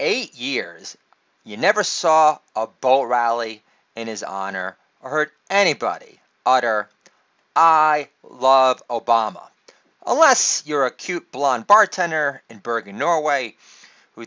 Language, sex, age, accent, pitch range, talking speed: English, male, 30-49, American, 120-165 Hz, 120 wpm